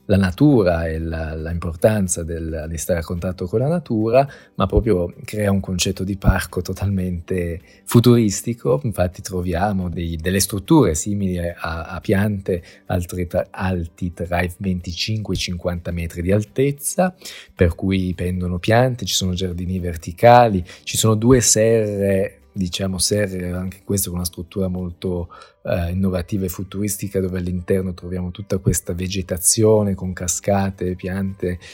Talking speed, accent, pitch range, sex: 140 wpm, native, 90-105 Hz, male